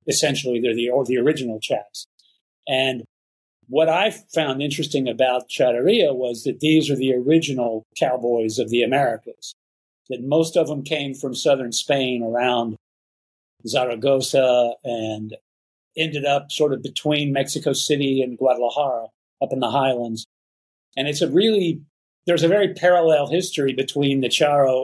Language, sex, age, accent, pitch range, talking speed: English, male, 50-69, American, 120-150 Hz, 145 wpm